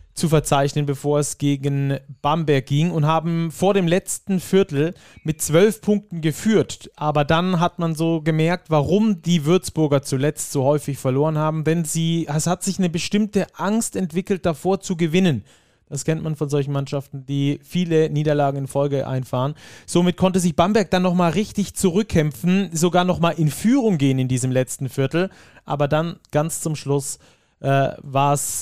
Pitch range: 140-180 Hz